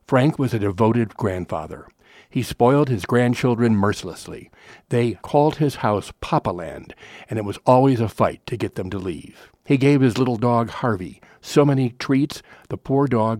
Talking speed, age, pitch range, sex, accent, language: 175 wpm, 60-79, 105-130 Hz, male, American, English